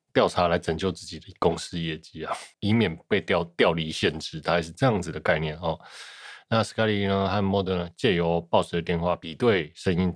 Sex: male